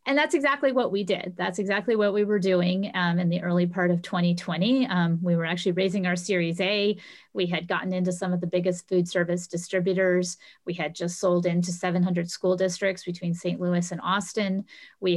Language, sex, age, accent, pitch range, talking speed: English, female, 30-49, American, 175-210 Hz, 205 wpm